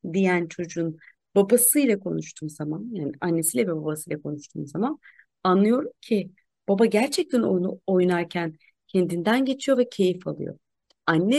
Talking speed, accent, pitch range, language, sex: 120 wpm, native, 170-250 Hz, Turkish, female